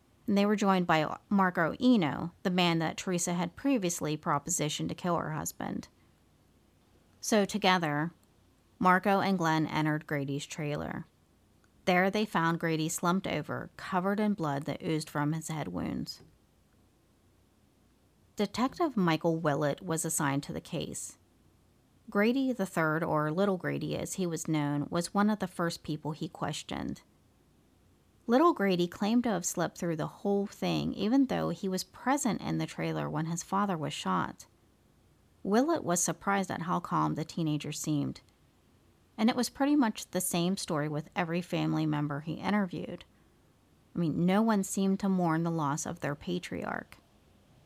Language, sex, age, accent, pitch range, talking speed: English, female, 40-59, American, 155-200 Hz, 155 wpm